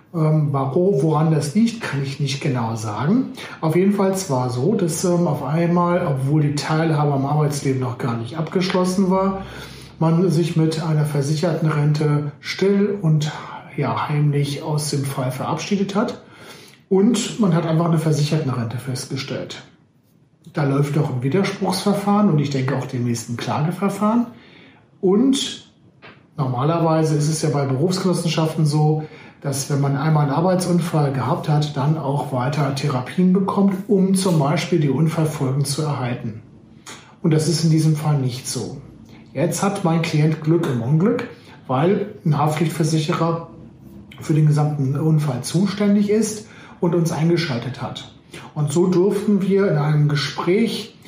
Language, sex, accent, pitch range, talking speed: German, male, German, 140-180 Hz, 150 wpm